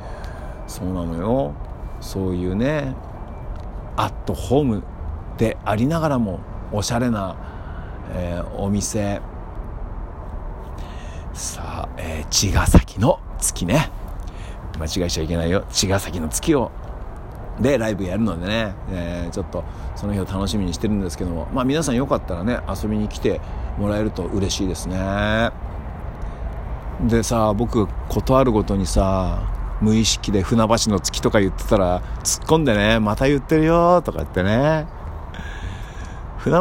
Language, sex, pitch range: Japanese, male, 85-110 Hz